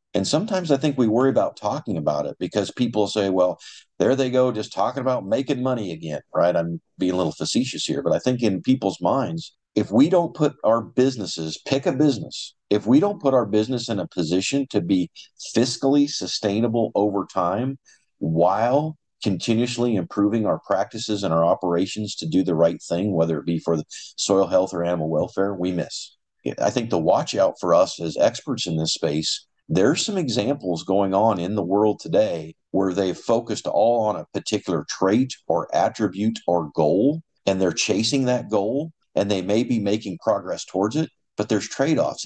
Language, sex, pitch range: English, male, 85-120 Hz